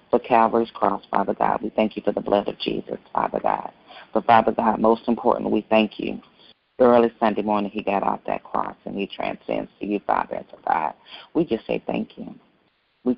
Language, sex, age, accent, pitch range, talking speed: English, female, 40-59, American, 110-120 Hz, 215 wpm